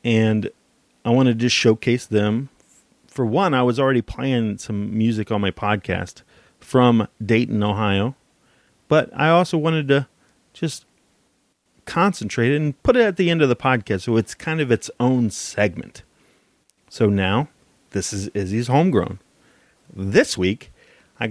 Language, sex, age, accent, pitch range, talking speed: English, male, 30-49, American, 105-130 Hz, 145 wpm